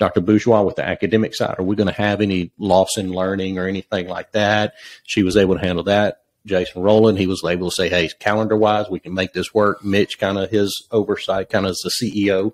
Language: English